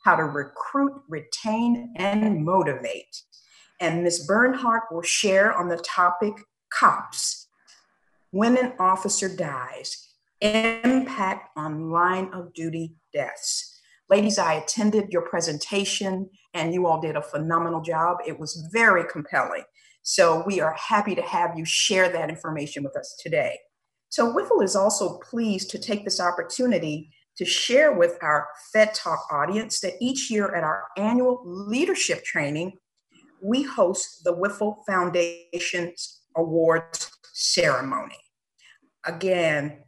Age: 50-69